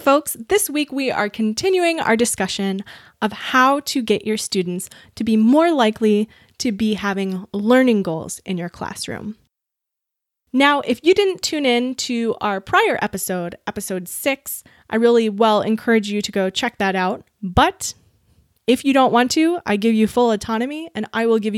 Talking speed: 175 wpm